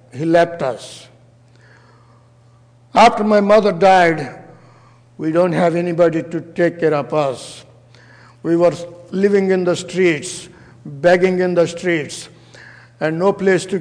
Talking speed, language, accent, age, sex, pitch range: 130 wpm, English, Indian, 60-79, male, 145-185 Hz